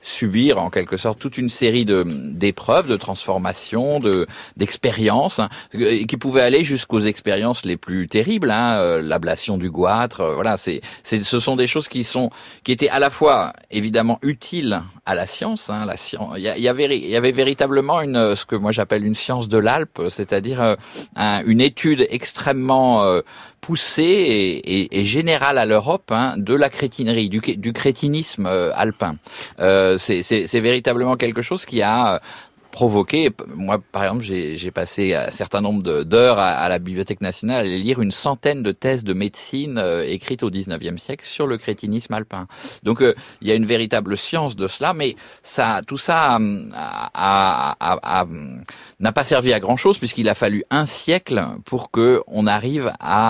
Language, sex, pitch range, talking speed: French, male, 100-135 Hz, 190 wpm